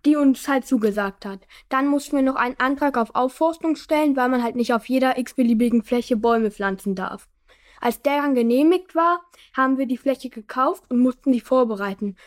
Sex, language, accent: female, German, German